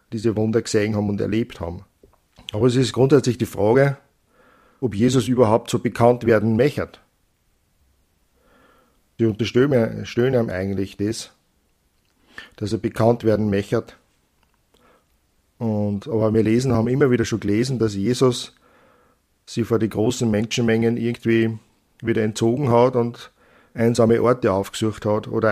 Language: German